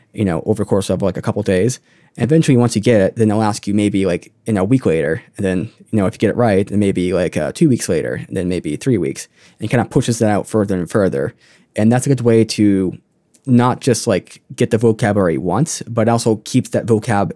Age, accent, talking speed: 10-29, American, 265 wpm